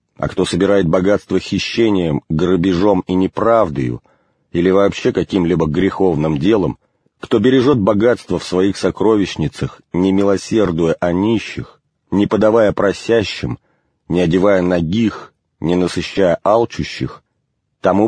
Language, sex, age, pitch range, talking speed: English, male, 40-59, 85-105 Hz, 110 wpm